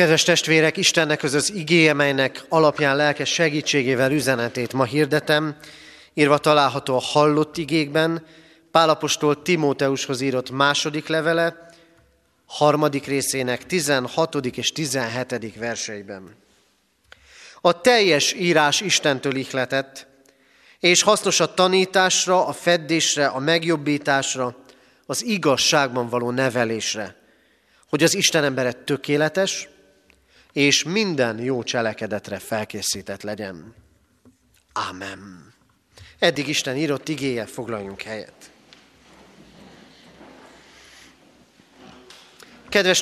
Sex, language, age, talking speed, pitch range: male, Hungarian, 30-49, 90 wpm, 130-165 Hz